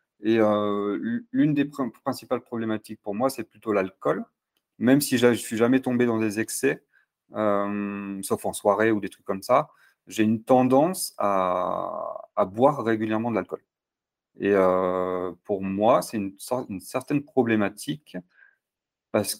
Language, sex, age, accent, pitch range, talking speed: French, male, 30-49, French, 95-120 Hz, 150 wpm